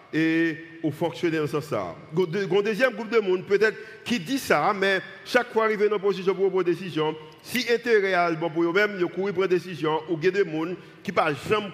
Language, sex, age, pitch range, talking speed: French, male, 50-69, 160-200 Hz, 250 wpm